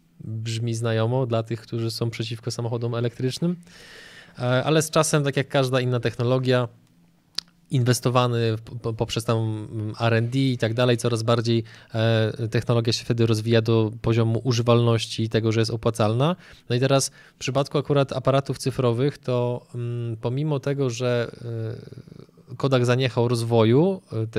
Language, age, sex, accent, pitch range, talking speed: Polish, 20-39, male, native, 115-130 Hz, 130 wpm